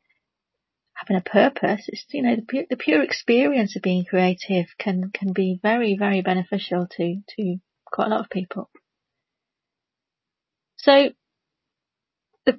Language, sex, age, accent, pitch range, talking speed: English, female, 40-59, British, 185-240 Hz, 140 wpm